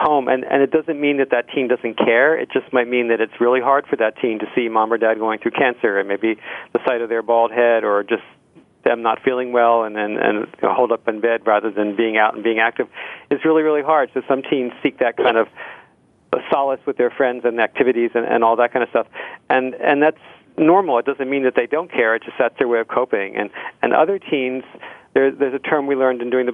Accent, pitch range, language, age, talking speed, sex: American, 115-135 Hz, English, 40-59, 255 wpm, male